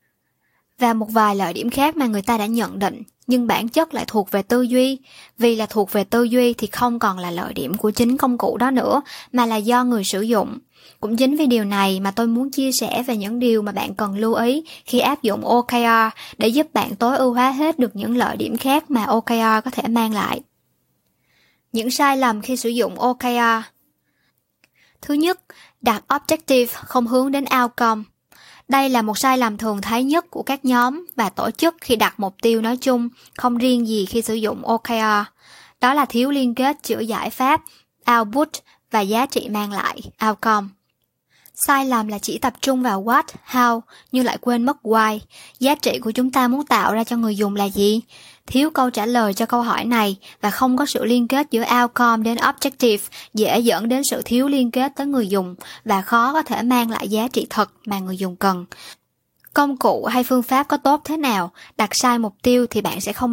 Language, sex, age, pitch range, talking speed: Vietnamese, male, 10-29, 215-255 Hz, 215 wpm